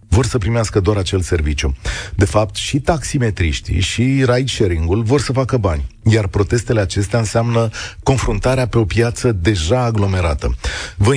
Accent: native